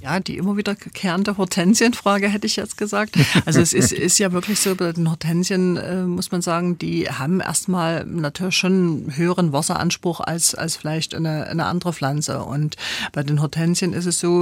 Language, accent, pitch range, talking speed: German, German, 150-175 Hz, 190 wpm